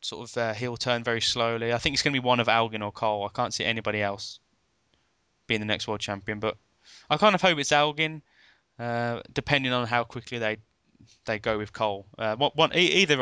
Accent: British